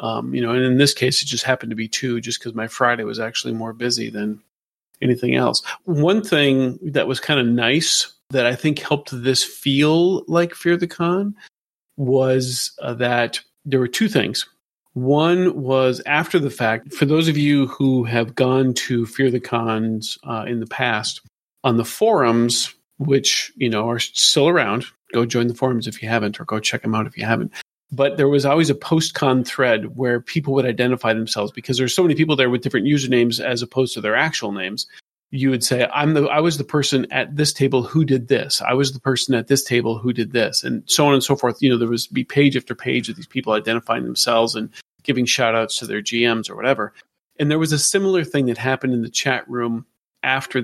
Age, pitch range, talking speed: 40-59, 120-140 Hz, 220 wpm